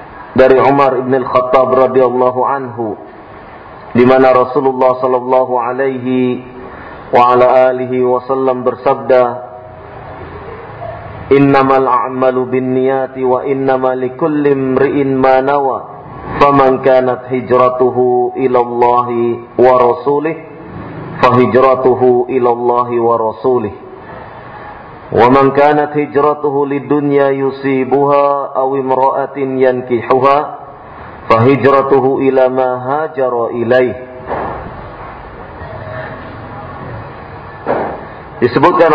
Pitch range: 125-140 Hz